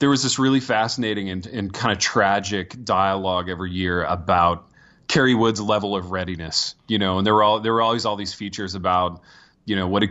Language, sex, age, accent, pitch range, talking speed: English, male, 30-49, American, 90-120 Hz, 215 wpm